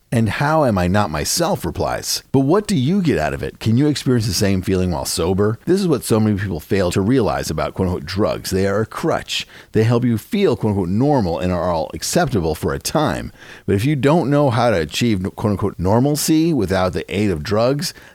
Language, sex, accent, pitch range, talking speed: English, male, American, 90-120 Hz, 220 wpm